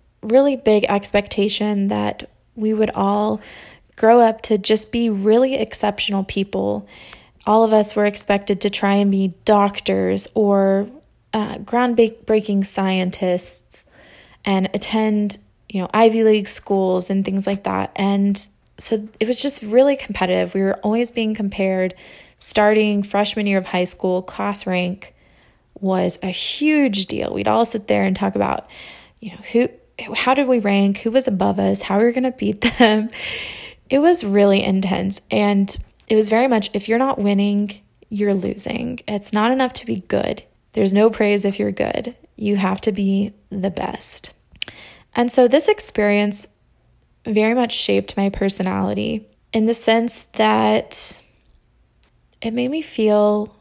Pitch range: 195-225 Hz